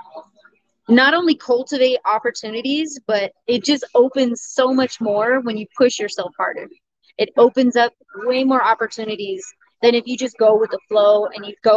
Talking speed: 170 wpm